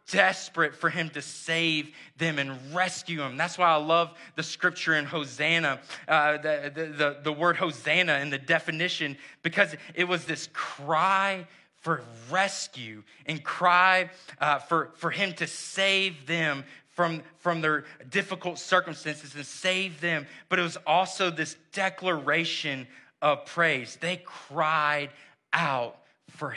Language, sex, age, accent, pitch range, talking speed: English, male, 30-49, American, 150-175 Hz, 140 wpm